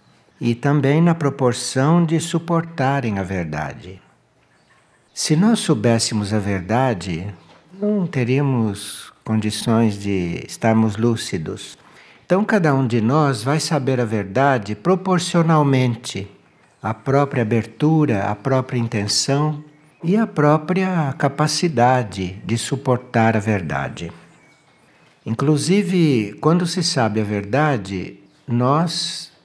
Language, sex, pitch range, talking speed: Portuguese, male, 115-155 Hz, 100 wpm